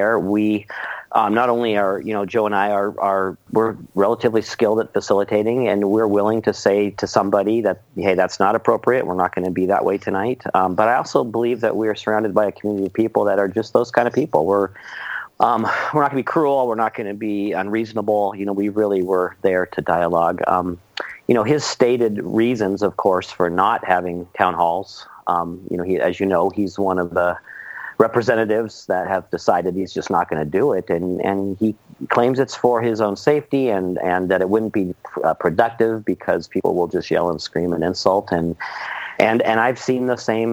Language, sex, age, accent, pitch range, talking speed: English, male, 40-59, American, 95-115 Hz, 220 wpm